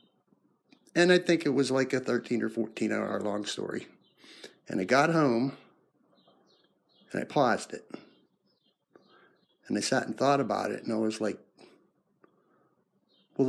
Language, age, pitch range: English, 50-69, 105-130 Hz